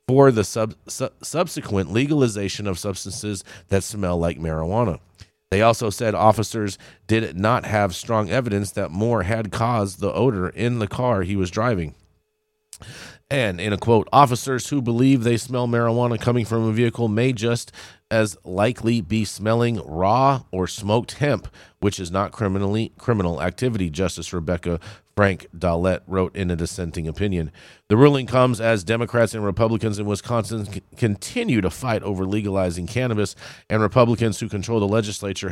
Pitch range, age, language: 95-115 Hz, 40-59, English